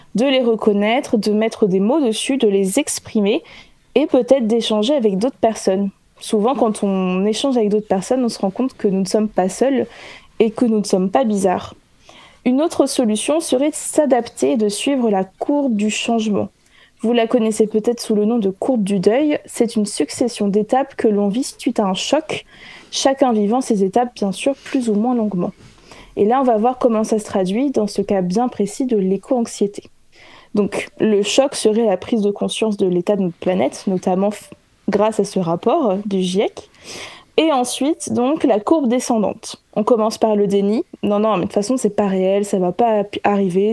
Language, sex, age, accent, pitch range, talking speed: French, female, 20-39, French, 205-255 Hz, 200 wpm